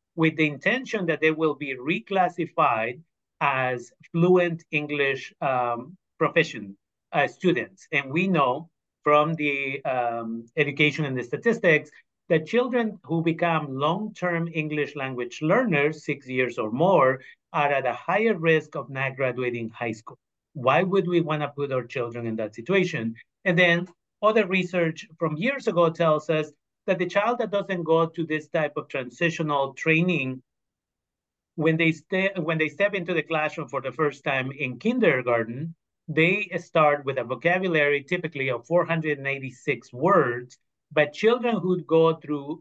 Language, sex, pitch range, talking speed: Spanish, male, 130-170 Hz, 150 wpm